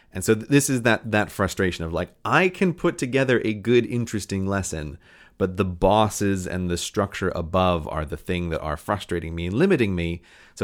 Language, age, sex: English, 30-49, male